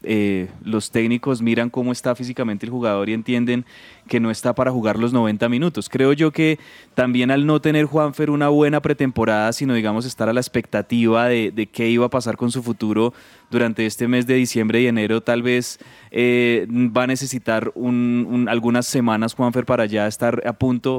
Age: 20-39